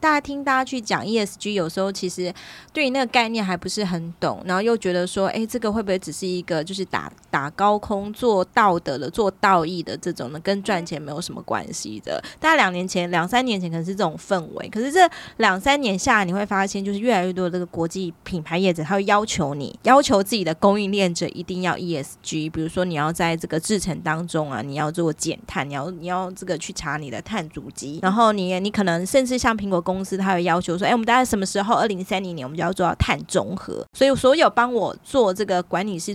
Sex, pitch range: female, 175-210 Hz